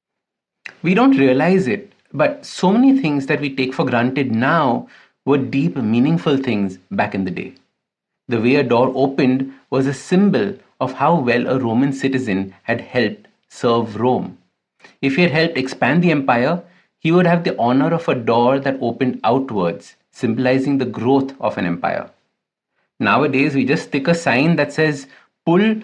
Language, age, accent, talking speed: English, 50-69, Indian, 170 wpm